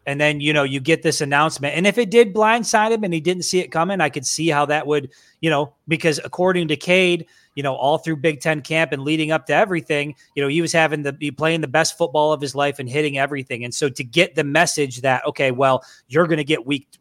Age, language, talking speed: 20-39, English, 265 wpm